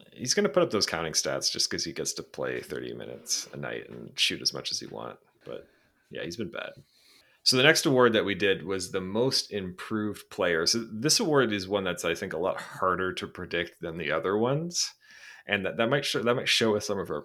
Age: 30-49